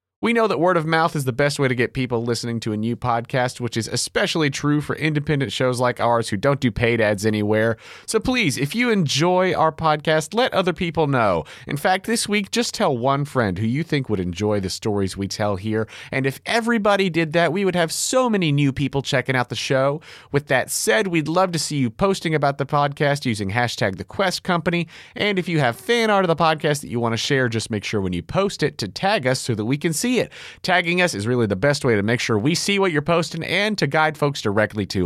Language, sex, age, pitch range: English, male, 30-49, 115-175 Hz